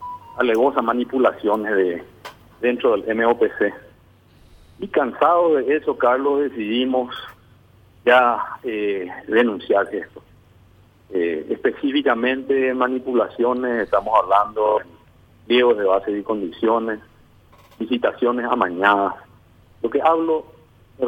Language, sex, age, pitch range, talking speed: Spanish, male, 50-69, 110-140 Hz, 90 wpm